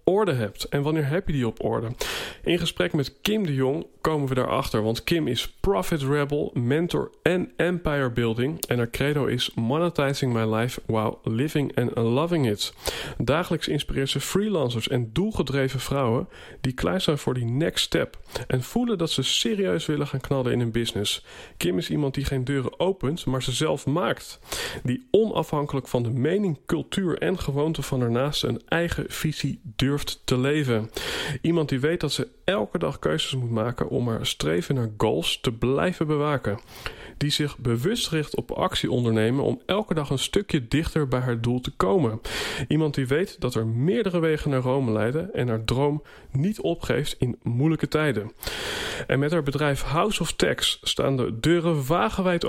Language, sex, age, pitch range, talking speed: Dutch, male, 40-59, 125-160 Hz, 180 wpm